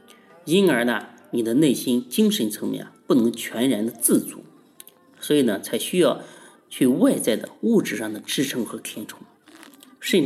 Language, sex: Chinese, male